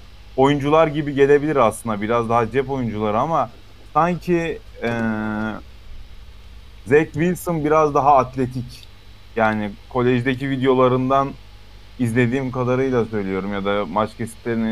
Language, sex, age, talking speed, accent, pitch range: Turkish, male, 30-49, 105 wpm, native, 105-130 Hz